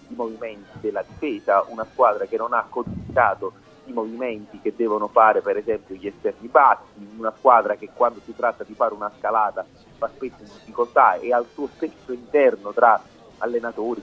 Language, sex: Italian, male